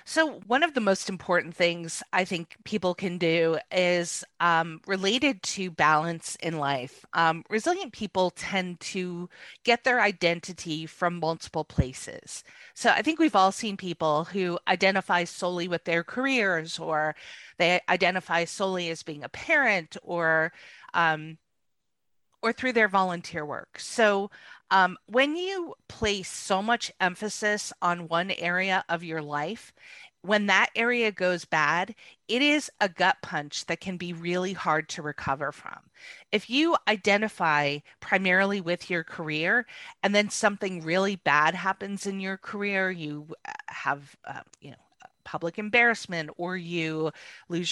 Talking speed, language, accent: 145 wpm, English, American